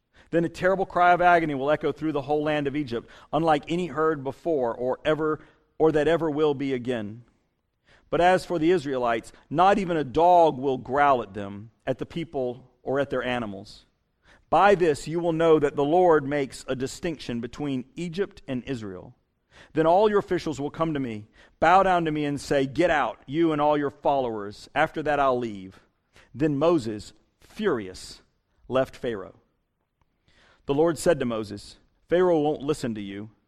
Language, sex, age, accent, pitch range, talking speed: English, male, 50-69, American, 130-170 Hz, 180 wpm